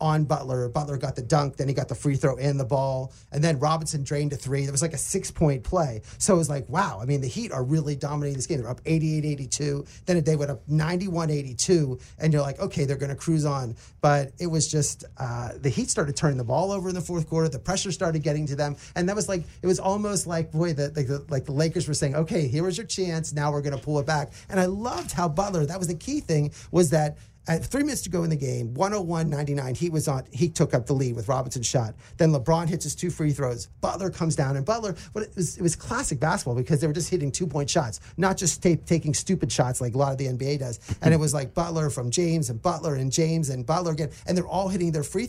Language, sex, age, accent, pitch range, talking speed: English, male, 30-49, American, 140-175 Hz, 270 wpm